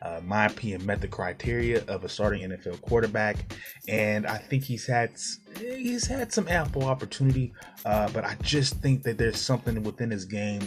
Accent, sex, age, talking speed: American, male, 20-39, 180 wpm